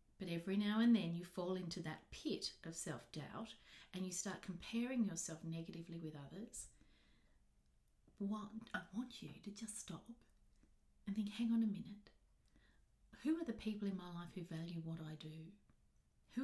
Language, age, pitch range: English, 40-59, 165-210 Hz